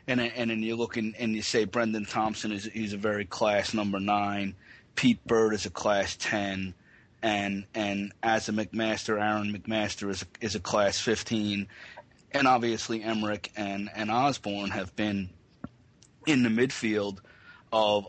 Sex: male